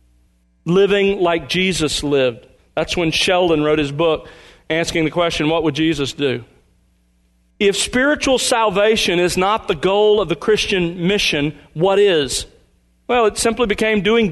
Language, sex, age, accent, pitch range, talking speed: English, male, 40-59, American, 155-210 Hz, 145 wpm